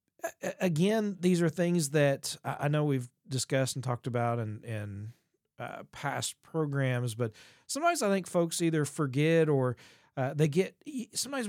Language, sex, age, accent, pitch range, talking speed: English, male, 40-59, American, 130-165 Hz, 150 wpm